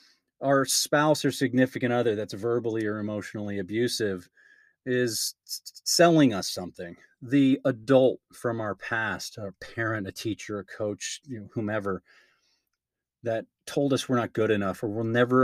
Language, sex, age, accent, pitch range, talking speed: English, male, 30-49, American, 105-140 Hz, 140 wpm